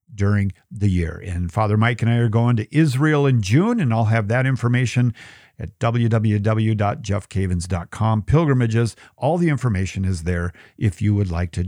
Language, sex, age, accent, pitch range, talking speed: English, male, 50-69, American, 95-120 Hz, 165 wpm